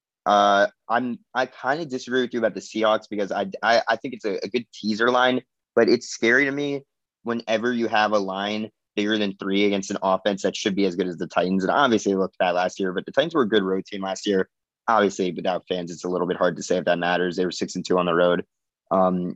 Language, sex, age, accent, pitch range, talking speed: English, male, 20-39, American, 95-110 Hz, 265 wpm